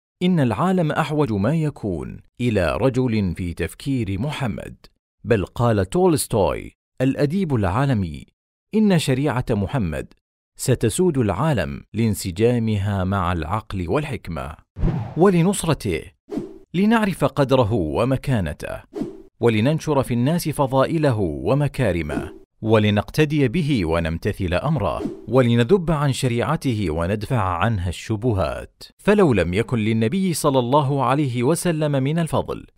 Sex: male